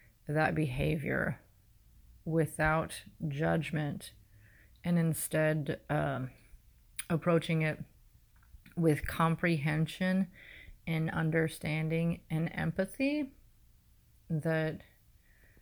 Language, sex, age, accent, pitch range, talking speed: English, female, 30-49, American, 150-170 Hz, 60 wpm